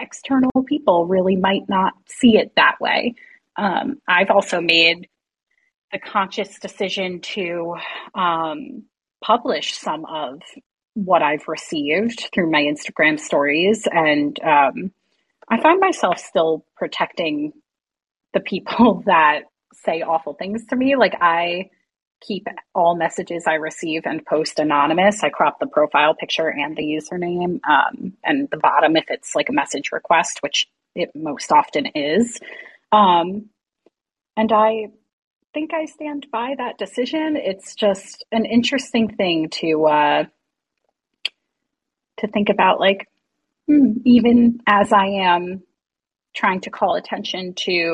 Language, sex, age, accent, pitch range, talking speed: English, female, 30-49, American, 165-240 Hz, 130 wpm